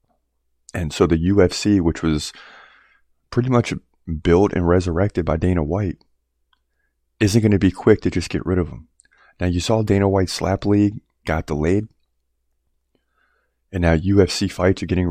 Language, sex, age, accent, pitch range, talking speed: English, male, 30-49, American, 80-95 Hz, 160 wpm